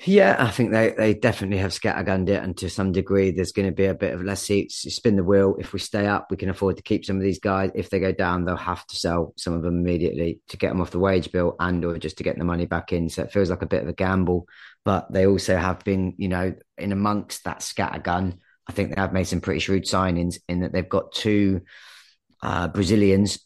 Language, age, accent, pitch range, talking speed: English, 30-49, British, 85-95 Hz, 265 wpm